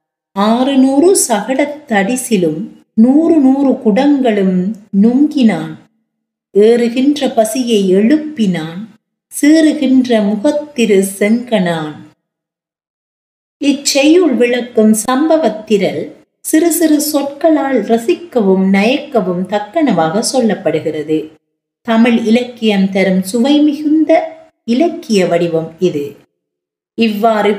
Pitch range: 175-255 Hz